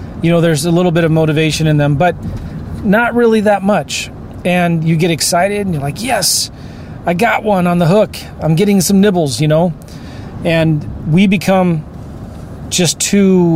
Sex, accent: male, American